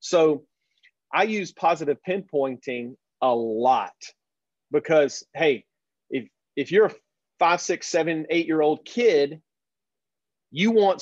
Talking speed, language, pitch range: 110 wpm, English, 140-185 Hz